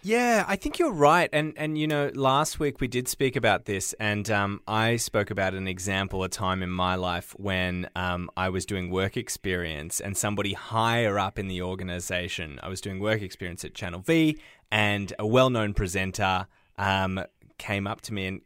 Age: 20-39